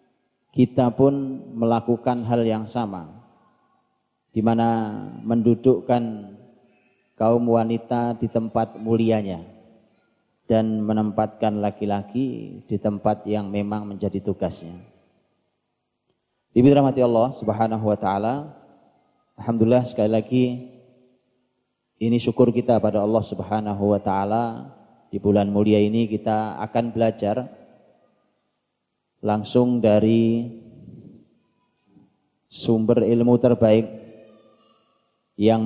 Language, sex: Indonesian, male